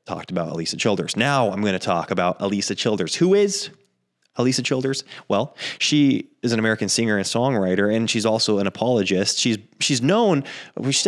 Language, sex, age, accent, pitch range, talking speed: English, male, 20-39, American, 100-130 Hz, 180 wpm